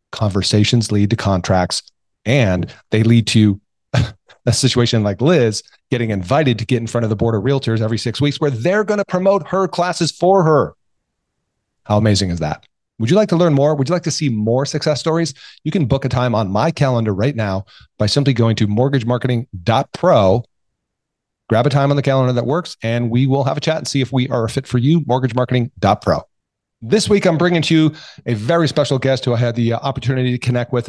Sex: male